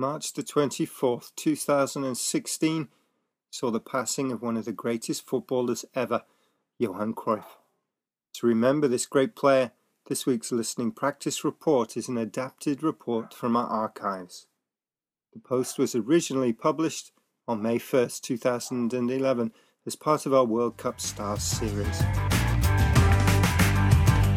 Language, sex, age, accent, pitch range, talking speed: English, male, 40-59, British, 110-135 Hz, 125 wpm